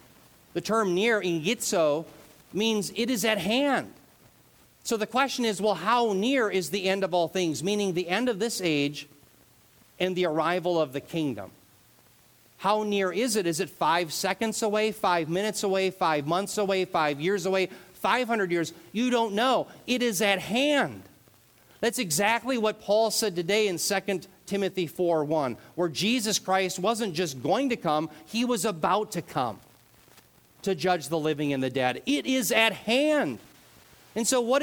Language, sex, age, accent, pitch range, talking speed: English, male, 40-59, American, 155-225 Hz, 170 wpm